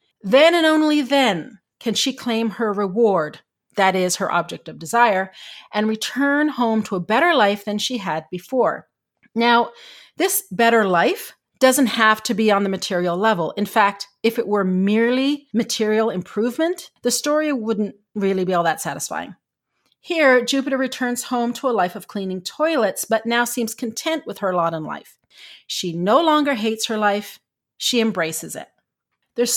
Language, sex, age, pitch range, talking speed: English, female, 40-59, 205-270 Hz, 170 wpm